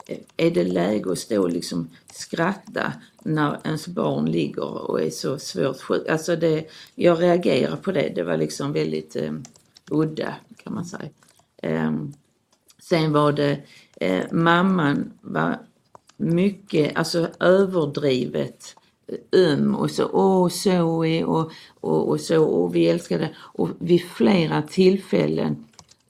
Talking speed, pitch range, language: 135 wpm, 135-175 Hz, Swedish